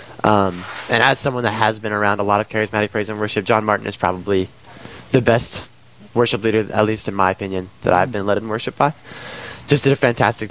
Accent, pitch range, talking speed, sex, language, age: American, 105-125 Hz, 225 wpm, male, English, 20-39